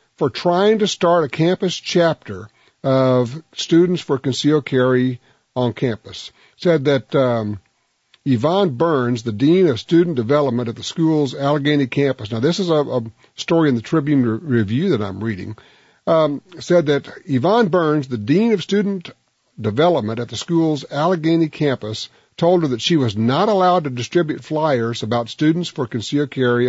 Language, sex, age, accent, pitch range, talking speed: English, male, 50-69, American, 125-175 Hz, 160 wpm